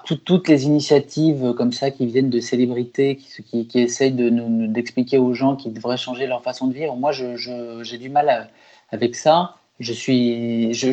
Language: French